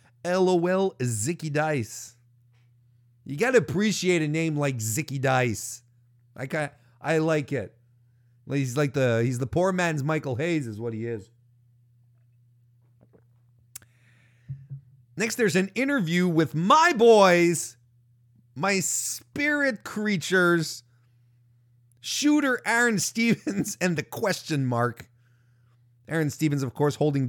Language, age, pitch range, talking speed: English, 30-49, 120-165 Hz, 110 wpm